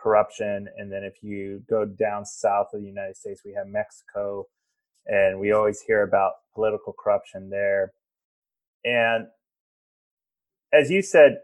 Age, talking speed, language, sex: 30-49, 140 wpm, English, male